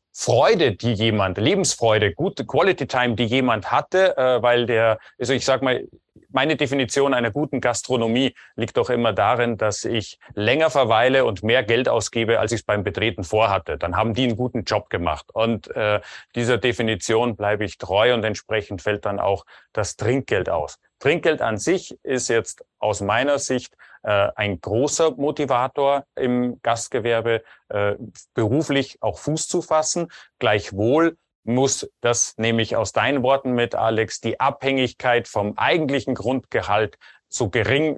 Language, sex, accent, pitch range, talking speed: German, male, German, 110-135 Hz, 150 wpm